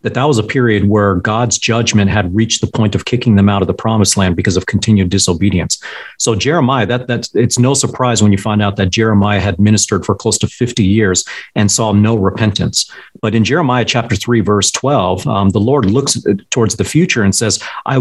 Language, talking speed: English, 215 wpm